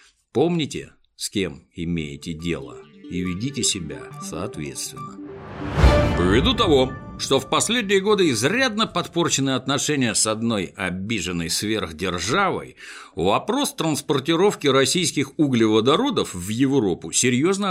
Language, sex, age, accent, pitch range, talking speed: Russian, male, 60-79, native, 90-140 Hz, 100 wpm